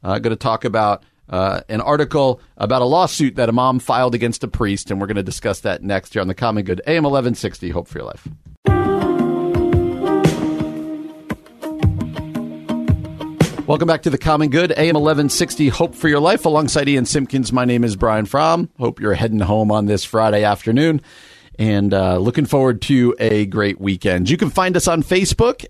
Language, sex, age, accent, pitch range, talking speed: English, male, 40-59, American, 105-155 Hz, 185 wpm